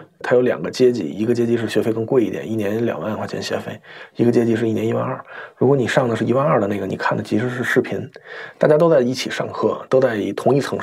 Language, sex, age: Chinese, male, 20-39